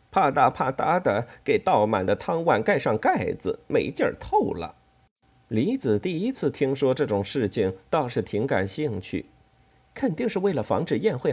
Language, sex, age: Chinese, male, 50-69